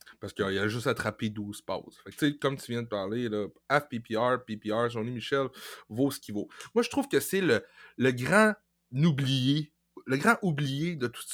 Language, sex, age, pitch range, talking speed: French, male, 30-49, 115-165 Hz, 185 wpm